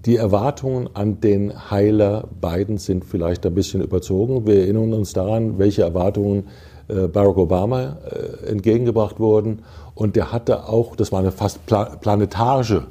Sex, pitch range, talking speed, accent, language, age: male, 95-115 Hz, 140 wpm, German, German, 50-69